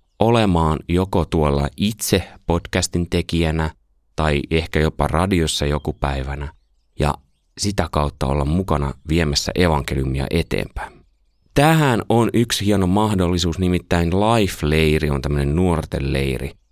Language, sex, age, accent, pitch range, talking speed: Finnish, male, 30-49, native, 75-100 Hz, 110 wpm